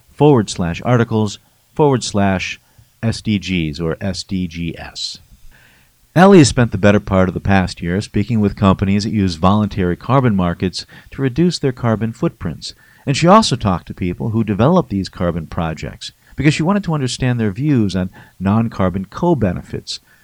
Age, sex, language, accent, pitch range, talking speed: 50-69, male, English, American, 95-120 Hz, 155 wpm